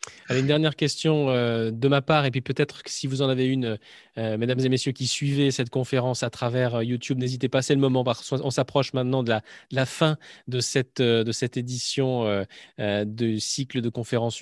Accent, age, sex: French, 20-39, male